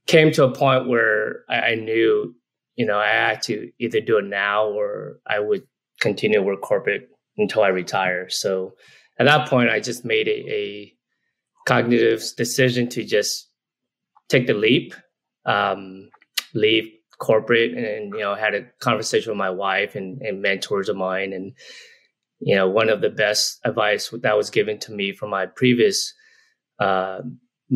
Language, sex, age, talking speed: English, male, 20-39, 165 wpm